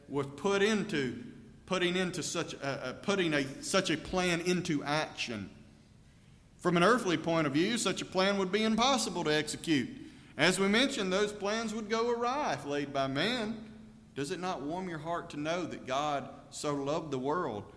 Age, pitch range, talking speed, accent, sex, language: 40-59, 130-175 Hz, 185 wpm, American, male, English